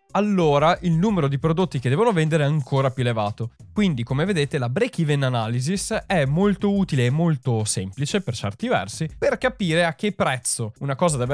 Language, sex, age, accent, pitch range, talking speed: Italian, male, 20-39, native, 120-165 Hz, 190 wpm